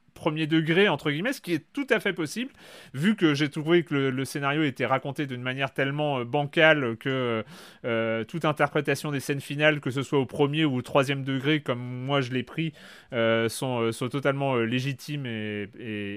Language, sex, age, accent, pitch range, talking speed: French, male, 30-49, French, 130-165 Hz, 210 wpm